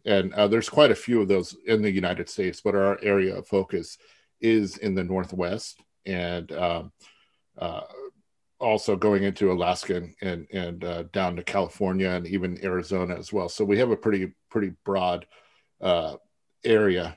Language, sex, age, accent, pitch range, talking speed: English, male, 40-59, American, 95-105 Hz, 170 wpm